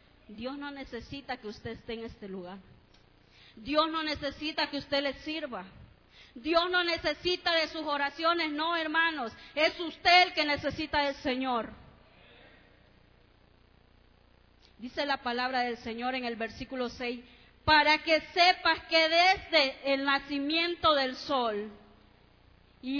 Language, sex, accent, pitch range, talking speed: Spanish, female, American, 260-340 Hz, 130 wpm